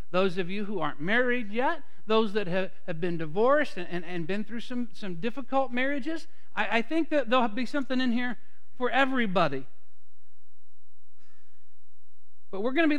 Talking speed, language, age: 150 wpm, English, 50-69